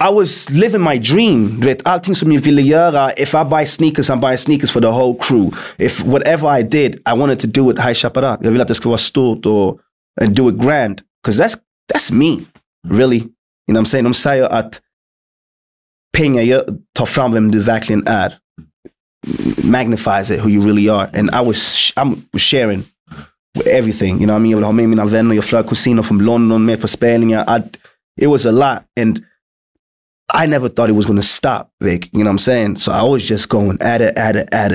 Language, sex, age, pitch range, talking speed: English, male, 20-39, 105-135 Hz, 220 wpm